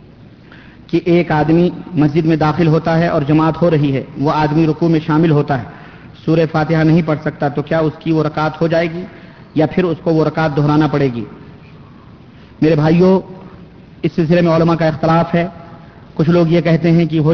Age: 40-59